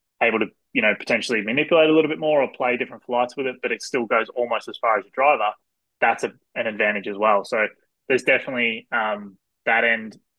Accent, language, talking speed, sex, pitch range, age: Australian, English, 220 wpm, male, 110-130 Hz, 20-39